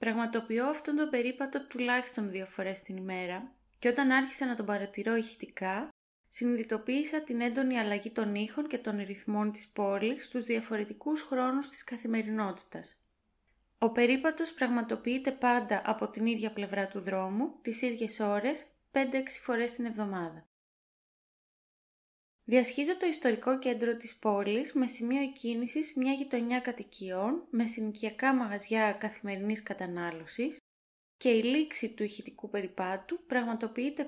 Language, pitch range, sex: Greek, 205-260 Hz, female